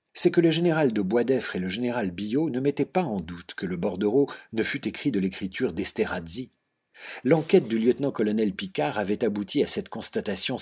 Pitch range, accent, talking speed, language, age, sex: 110-165 Hz, French, 185 wpm, French, 50-69, male